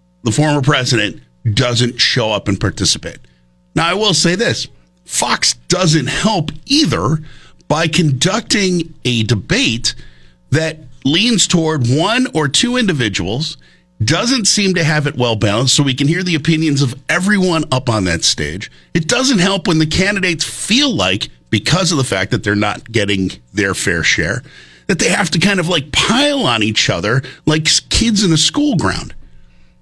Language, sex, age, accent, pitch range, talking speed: English, male, 50-69, American, 110-170 Hz, 165 wpm